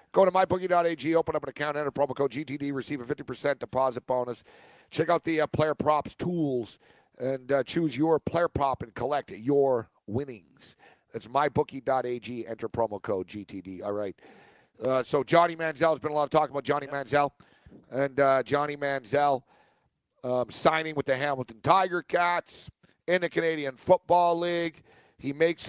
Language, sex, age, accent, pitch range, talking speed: English, male, 50-69, American, 135-160 Hz, 170 wpm